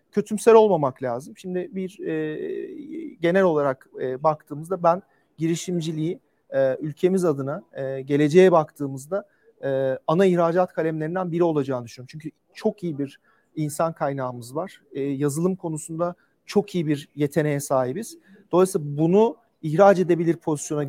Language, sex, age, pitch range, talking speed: English, male, 40-59, 150-185 Hz, 130 wpm